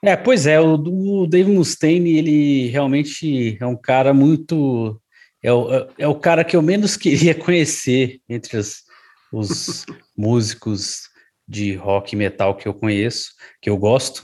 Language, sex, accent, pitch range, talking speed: Portuguese, male, Brazilian, 110-135 Hz, 150 wpm